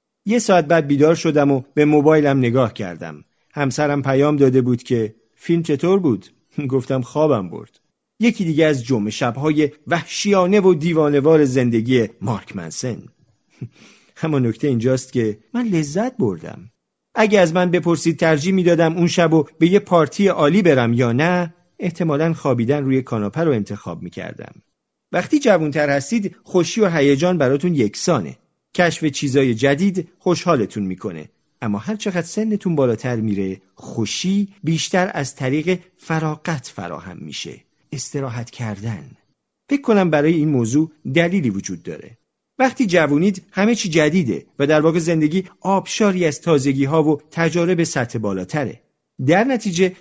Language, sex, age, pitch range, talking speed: Persian, male, 50-69, 130-180 Hz, 140 wpm